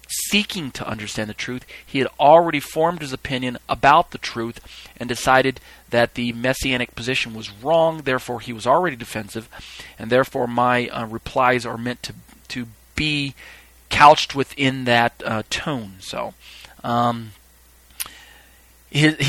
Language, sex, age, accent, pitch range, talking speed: English, male, 40-59, American, 115-145 Hz, 140 wpm